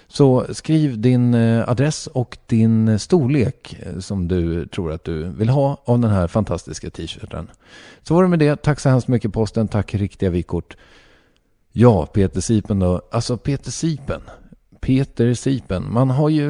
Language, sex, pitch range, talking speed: English, male, 100-135 Hz, 160 wpm